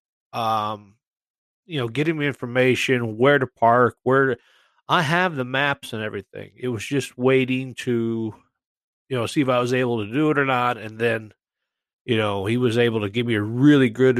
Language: English